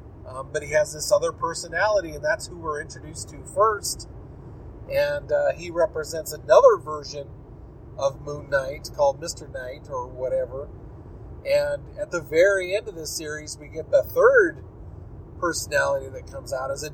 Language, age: English, 30-49